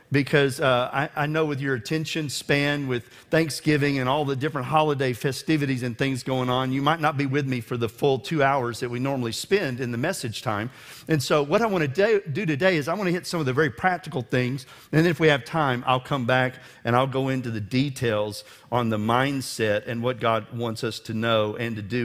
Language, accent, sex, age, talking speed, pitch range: English, American, male, 40-59, 235 wpm, 125-160 Hz